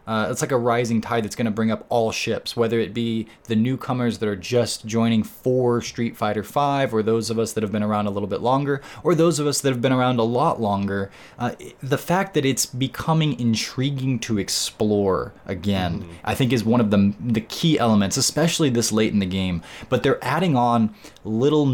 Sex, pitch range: male, 105-125 Hz